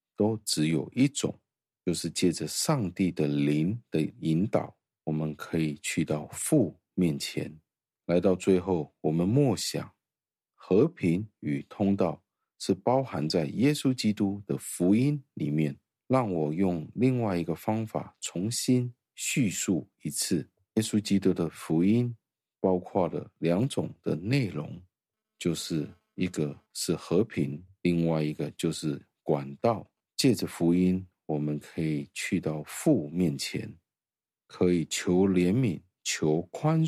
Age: 50-69